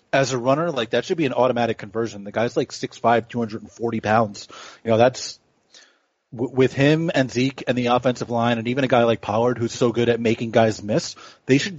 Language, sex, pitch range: English, male, 115-130 Hz